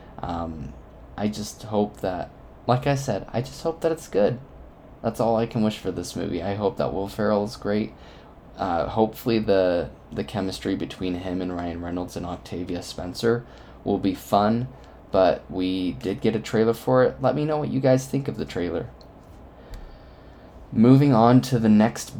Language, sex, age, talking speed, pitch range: English, male, 20-39, 185 wpm, 90-115 Hz